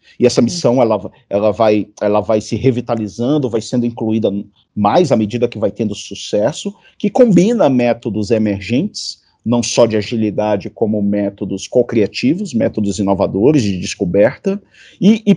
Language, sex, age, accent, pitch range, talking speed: Portuguese, male, 50-69, Brazilian, 110-155 Hz, 135 wpm